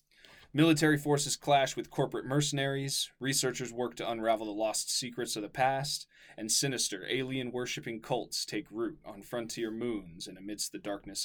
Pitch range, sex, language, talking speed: 115-140 Hz, male, English, 155 wpm